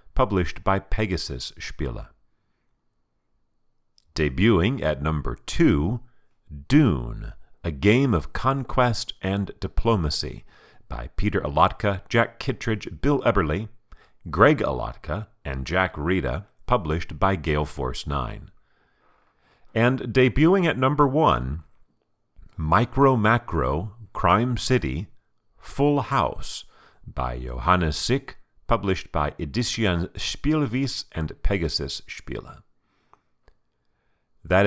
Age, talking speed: 50-69, 95 wpm